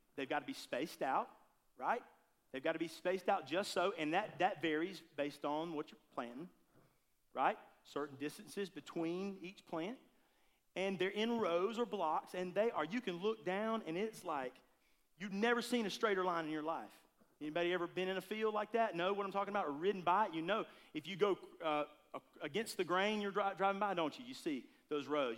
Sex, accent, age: male, American, 40-59